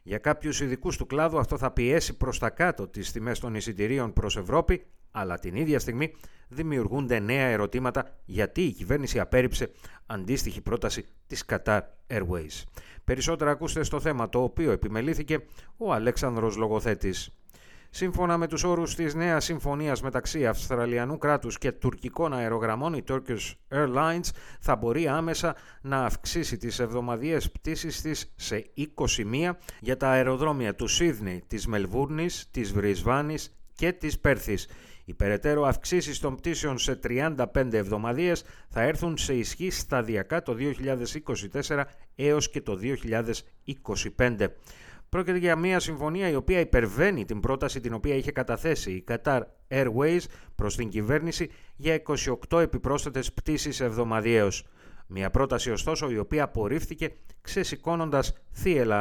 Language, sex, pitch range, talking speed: Greek, male, 110-155 Hz, 135 wpm